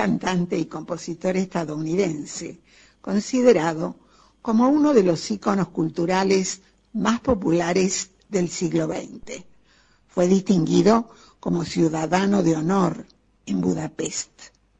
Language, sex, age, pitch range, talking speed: Spanish, female, 60-79, 165-215 Hz, 95 wpm